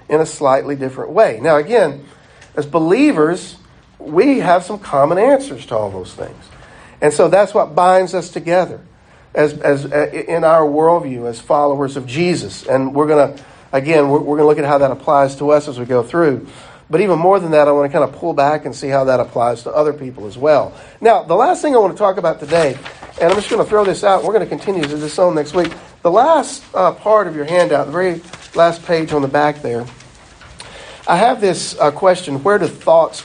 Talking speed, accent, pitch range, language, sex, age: 220 wpm, American, 140-175 Hz, English, male, 50-69